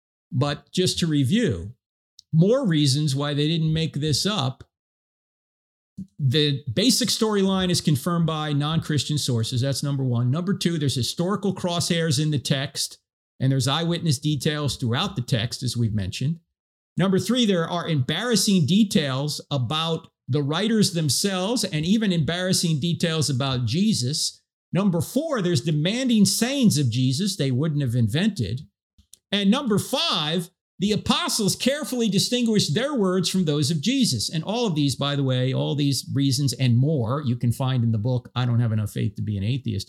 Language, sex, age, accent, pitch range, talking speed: English, male, 50-69, American, 125-180 Hz, 160 wpm